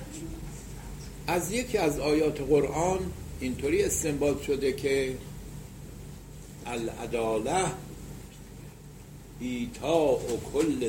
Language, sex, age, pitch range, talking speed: English, male, 70-89, 120-165 Hz, 75 wpm